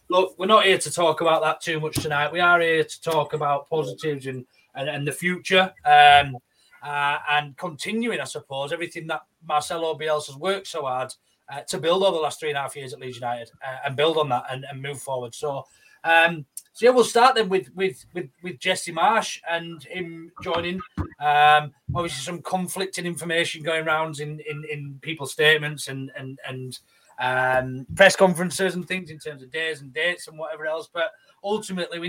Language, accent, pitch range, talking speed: English, British, 145-175 Hz, 205 wpm